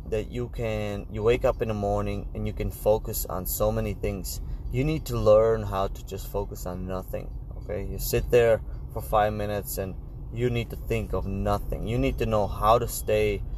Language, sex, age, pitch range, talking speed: English, male, 20-39, 95-120 Hz, 210 wpm